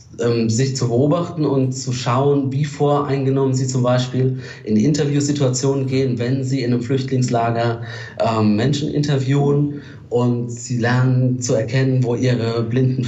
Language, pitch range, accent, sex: German, 120-135 Hz, German, male